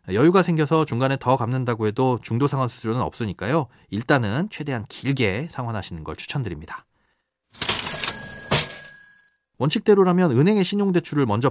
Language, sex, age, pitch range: Korean, male, 30-49, 110-160 Hz